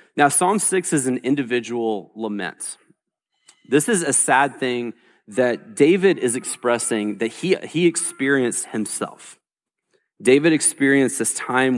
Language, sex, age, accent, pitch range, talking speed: English, male, 30-49, American, 115-150 Hz, 125 wpm